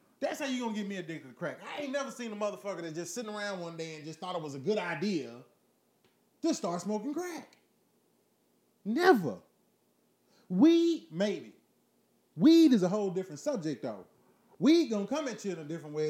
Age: 30-49